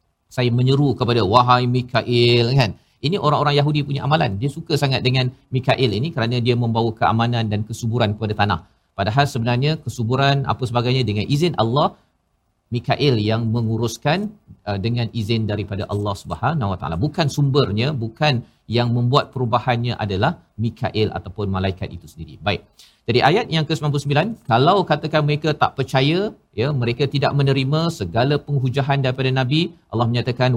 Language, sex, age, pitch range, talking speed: Malayalam, male, 50-69, 115-145 Hz, 145 wpm